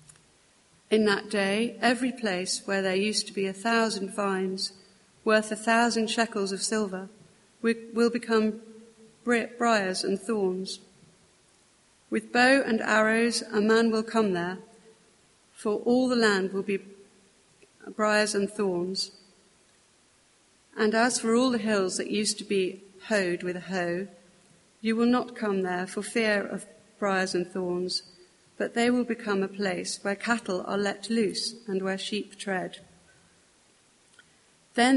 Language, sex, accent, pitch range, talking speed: English, female, British, 190-225 Hz, 140 wpm